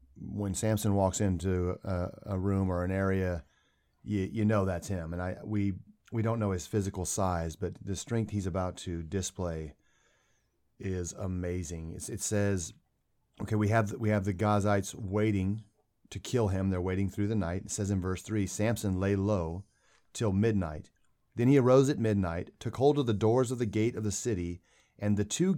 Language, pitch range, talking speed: English, 95-115 Hz, 190 wpm